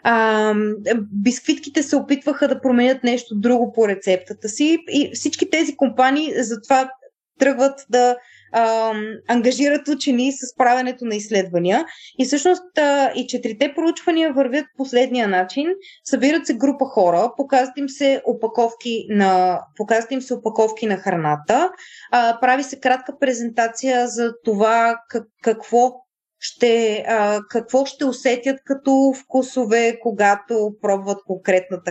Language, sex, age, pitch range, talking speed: Bulgarian, female, 20-39, 225-280 Hz, 120 wpm